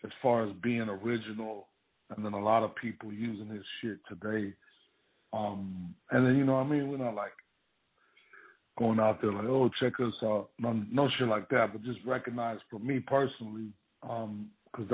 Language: English